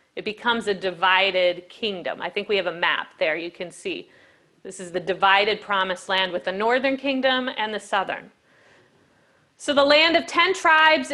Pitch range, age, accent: 195-260 Hz, 40-59, American